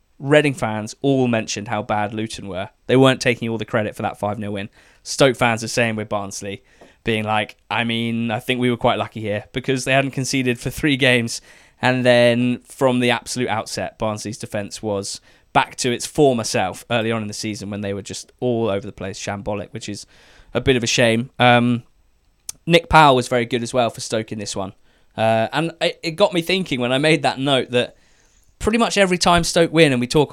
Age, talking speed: 20-39, 220 wpm